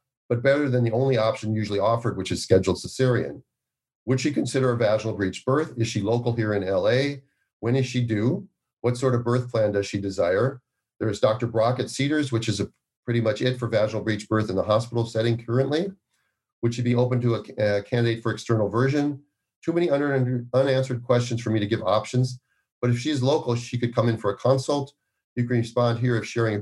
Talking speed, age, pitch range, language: 215 wpm, 40-59, 110-130 Hz, English